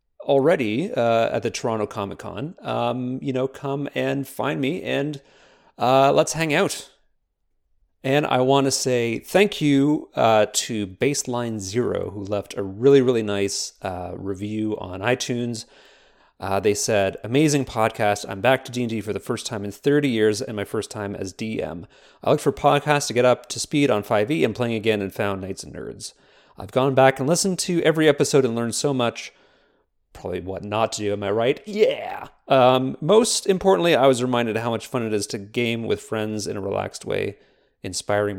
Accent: American